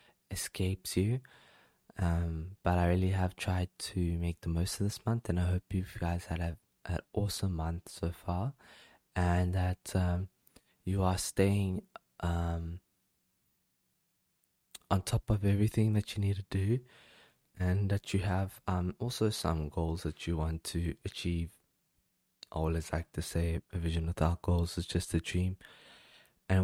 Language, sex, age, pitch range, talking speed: English, male, 20-39, 80-95 Hz, 160 wpm